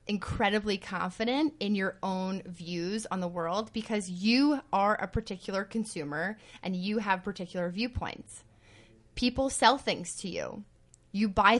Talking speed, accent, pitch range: 140 wpm, American, 190-245 Hz